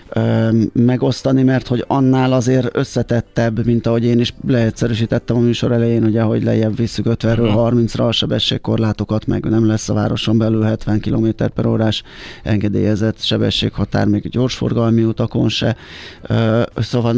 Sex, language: male, Hungarian